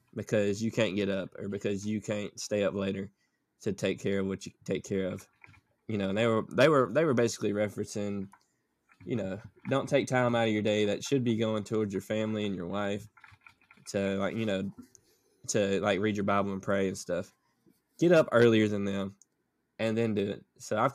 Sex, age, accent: male, 20-39, American